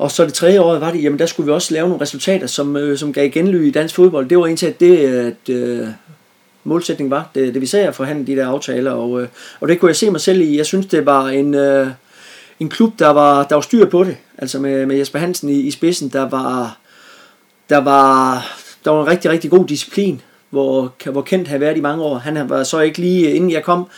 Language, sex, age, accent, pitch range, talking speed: Danish, male, 30-49, native, 135-170 Hz, 255 wpm